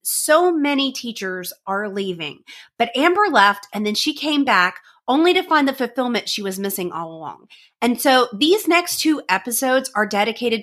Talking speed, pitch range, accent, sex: 175 wpm, 190-255 Hz, American, female